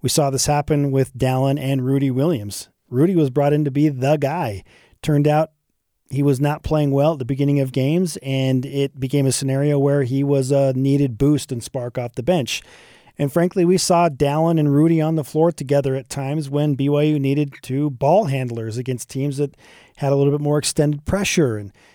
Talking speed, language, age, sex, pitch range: 205 wpm, English, 40-59, male, 135-150 Hz